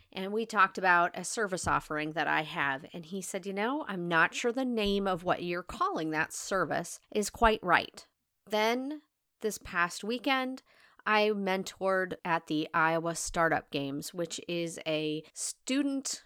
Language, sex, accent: English, female, American